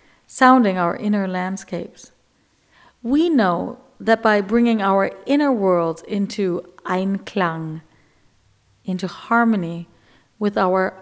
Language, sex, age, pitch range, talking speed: English, female, 50-69, 180-230 Hz, 100 wpm